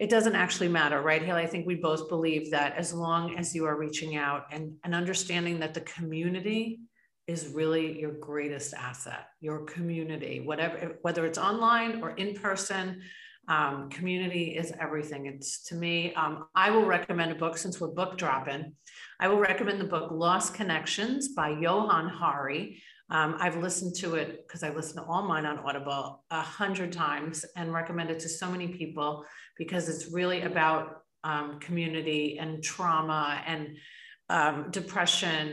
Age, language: 40-59, English